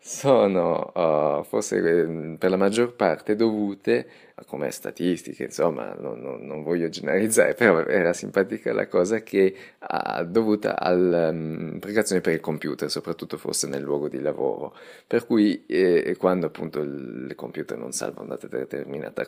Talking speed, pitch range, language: 145 wpm, 85-120 Hz, Italian